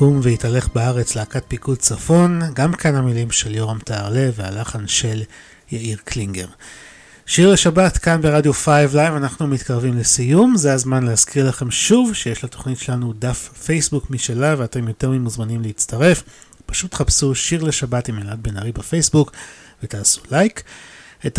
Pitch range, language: 120-155 Hz, Hebrew